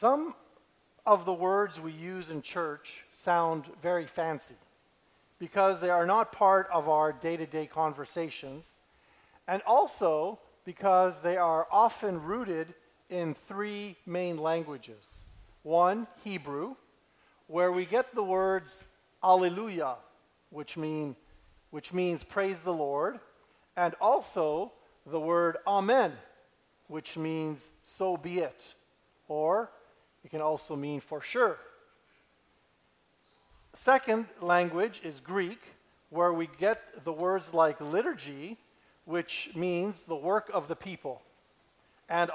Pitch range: 155-195 Hz